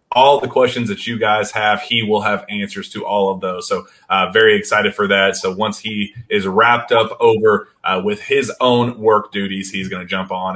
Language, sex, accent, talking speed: English, male, American, 220 wpm